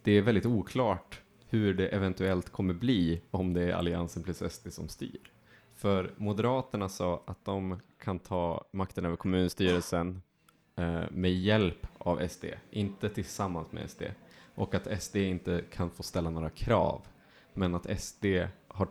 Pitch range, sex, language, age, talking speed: 90-105 Hz, male, Swedish, 20-39, 155 wpm